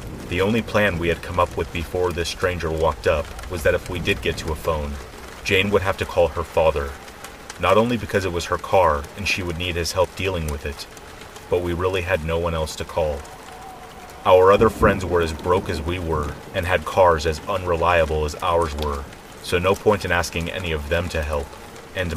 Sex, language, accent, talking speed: male, English, American, 220 wpm